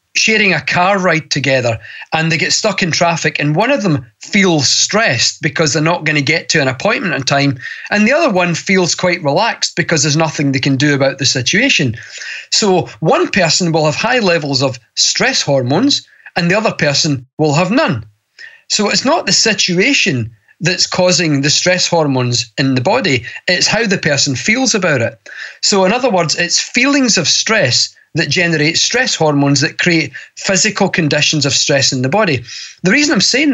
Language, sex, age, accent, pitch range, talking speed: English, male, 40-59, British, 145-195 Hz, 190 wpm